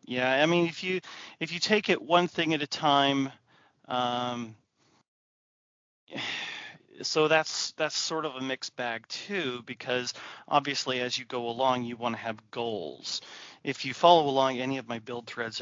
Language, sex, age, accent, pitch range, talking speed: English, male, 30-49, American, 115-135 Hz, 170 wpm